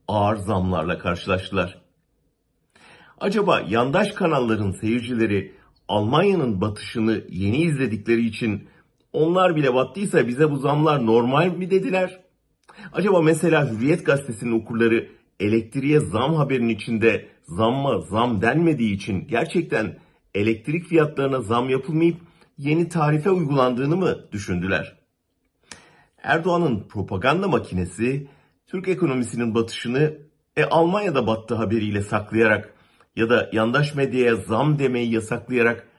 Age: 50-69